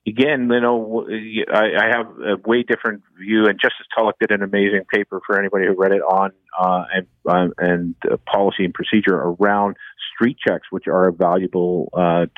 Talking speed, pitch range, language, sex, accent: 185 wpm, 95-110 Hz, English, male, American